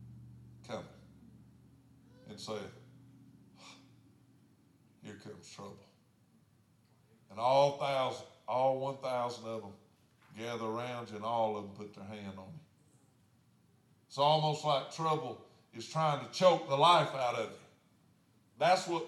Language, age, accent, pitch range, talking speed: English, 50-69, American, 130-170 Hz, 125 wpm